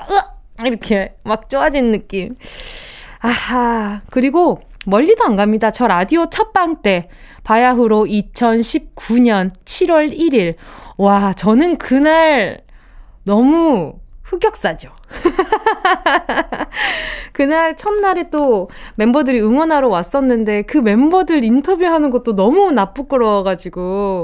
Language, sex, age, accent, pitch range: Korean, female, 20-39, native, 205-320 Hz